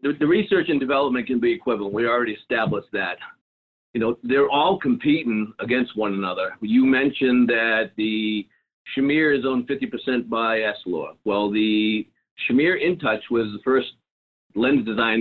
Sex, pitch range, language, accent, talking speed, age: male, 110-135 Hz, English, American, 150 wpm, 50-69